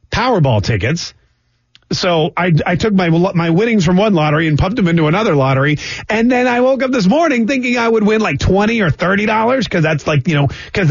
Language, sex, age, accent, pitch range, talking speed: English, male, 30-49, American, 135-190 Hz, 220 wpm